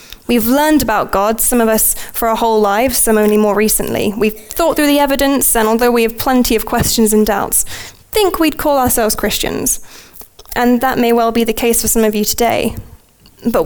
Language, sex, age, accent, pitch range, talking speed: English, female, 10-29, British, 215-250 Hz, 205 wpm